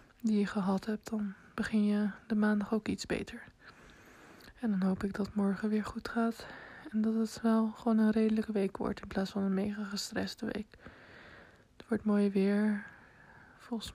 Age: 20-39